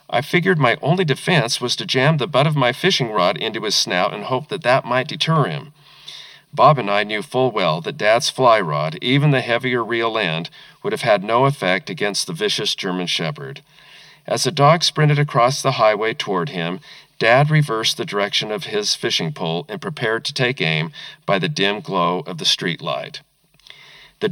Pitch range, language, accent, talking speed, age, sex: 105-150 Hz, English, American, 195 wpm, 40-59, male